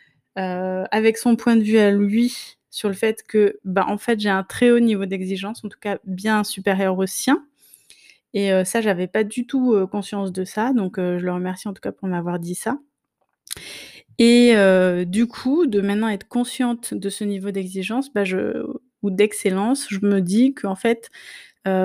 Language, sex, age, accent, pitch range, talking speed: French, female, 20-39, French, 190-230 Hz, 205 wpm